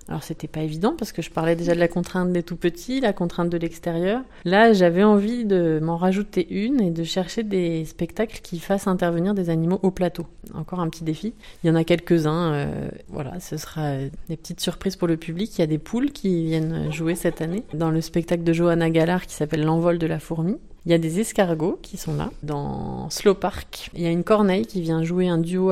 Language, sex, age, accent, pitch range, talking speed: French, female, 30-49, French, 160-185 Hz, 240 wpm